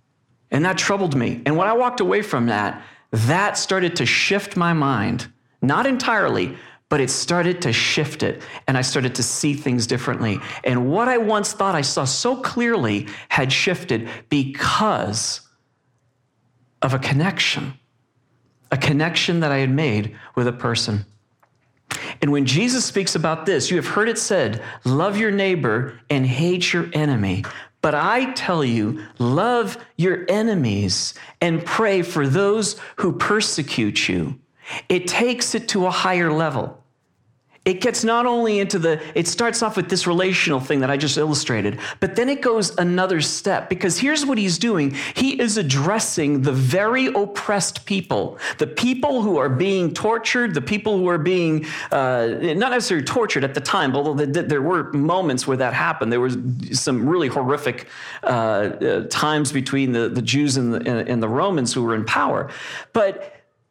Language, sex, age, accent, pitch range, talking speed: English, male, 50-69, American, 125-195 Hz, 165 wpm